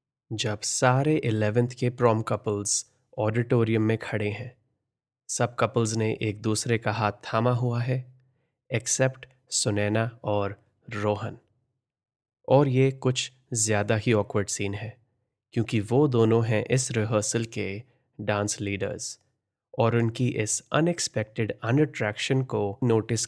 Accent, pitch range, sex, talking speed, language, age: native, 110-125 Hz, male, 125 wpm, Hindi, 20-39